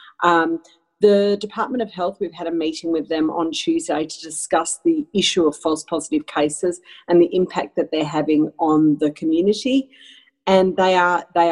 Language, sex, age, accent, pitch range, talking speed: English, female, 40-59, Australian, 160-230 Hz, 165 wpm